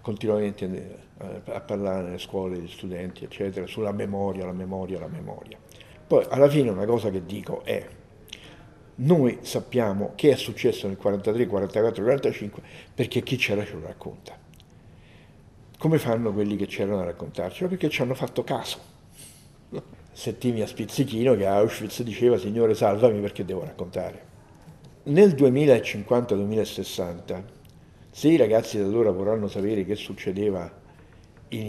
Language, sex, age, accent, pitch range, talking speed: Italian, male, 60-79, native, 95-120 Hz, 140 wpm